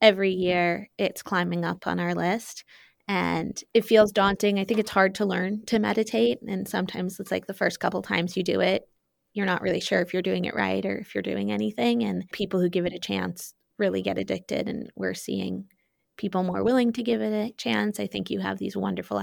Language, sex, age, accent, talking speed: English, female, 20-39, American, 225 wpm